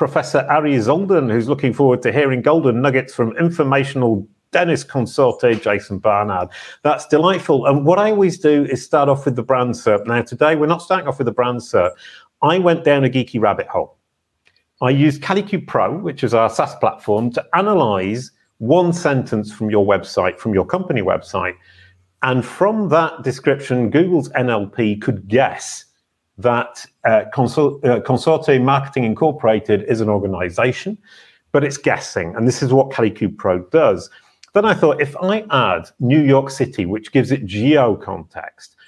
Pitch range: 110-150 Hz